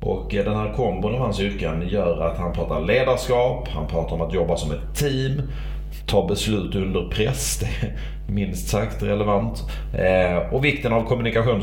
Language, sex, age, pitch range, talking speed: Swedish, male, 30-49, 95-120 Hz, 165 wpm